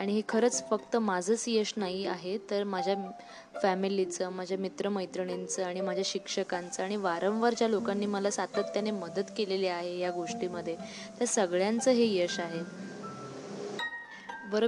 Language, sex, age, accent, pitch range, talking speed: Marathi, female, 20-39, native, 190-215 Hz, 135 wpm